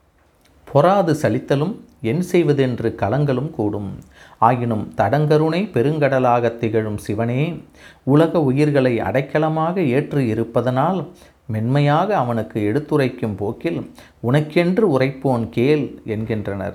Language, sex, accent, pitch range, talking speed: Tamil, male, native, 105-150 Hz, 85 wpm